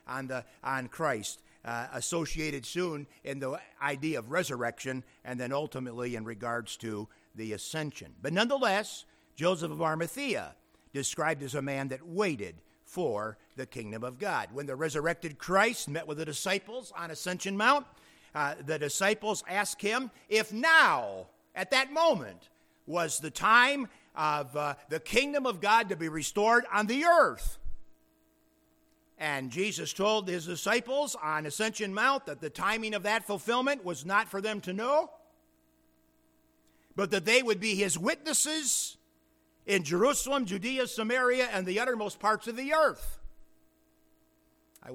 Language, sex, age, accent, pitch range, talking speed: English, male, 50-69, American, 145-215 Hz, 145 wpm